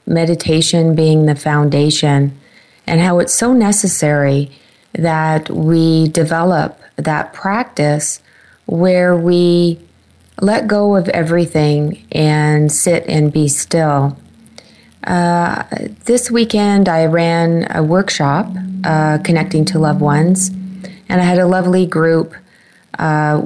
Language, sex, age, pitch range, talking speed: English, female, 30-49, 155-190 Hz, 115 wpm